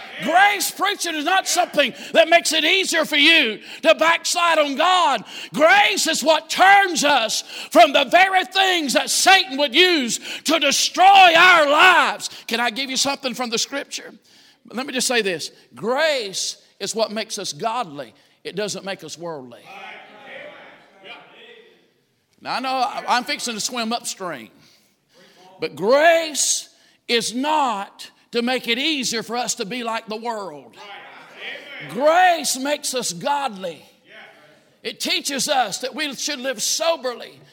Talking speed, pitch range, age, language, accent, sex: 145 wpm, 240-320 Hz, 50-69, English, American, male